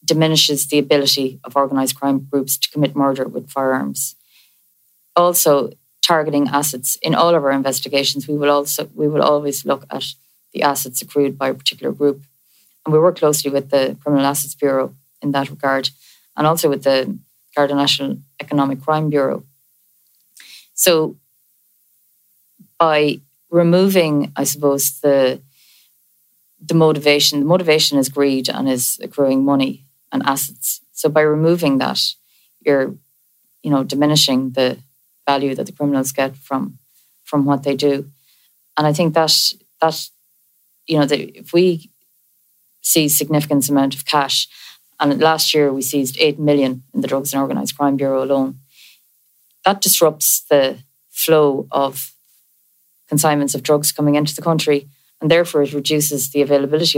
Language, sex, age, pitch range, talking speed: English, female, 30-49, 135-150 Hz, 145 wpm